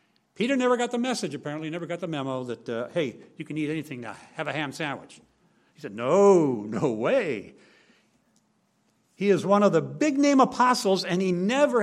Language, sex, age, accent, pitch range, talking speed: English, male, 60-79, American, 155-220 Hz, 190 wpm